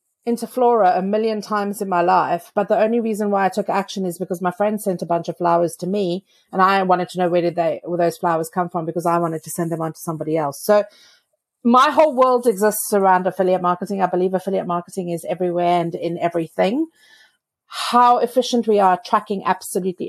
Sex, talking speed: female, 220 wpm